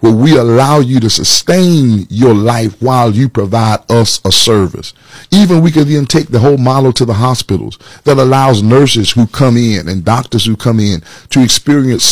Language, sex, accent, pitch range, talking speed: English, male, American, 110-145 Hz, 190 wpm